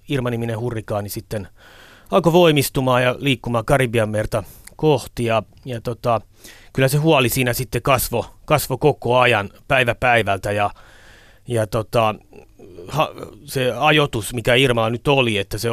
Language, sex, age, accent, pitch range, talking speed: Finnish, male, 30-49, native, 110-130 Hz, 125 wpm